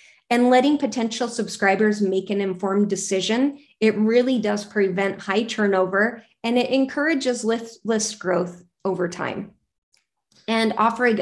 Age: 30-49